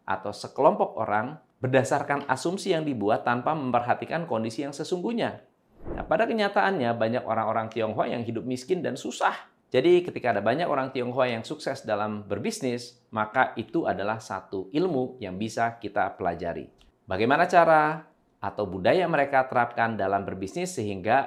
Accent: native